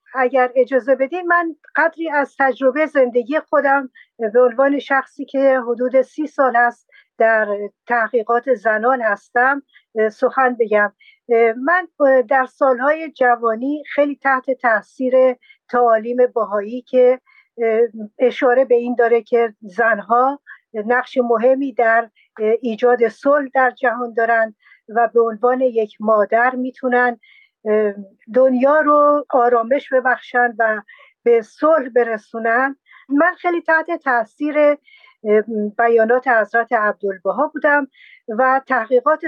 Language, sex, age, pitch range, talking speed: Persian, female, 50-69, 230-290 Hz, 110 wpm